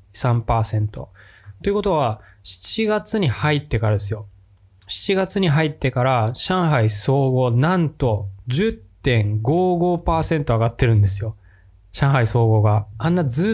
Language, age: Japanese, 20-39